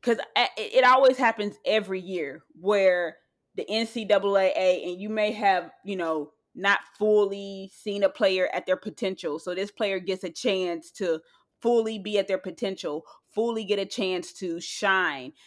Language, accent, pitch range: English, American, 190-230 Hz